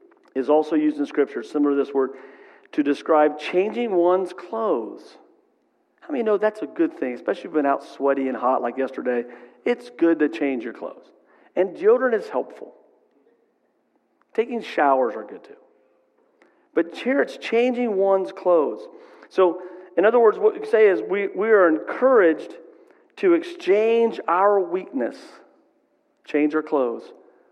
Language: English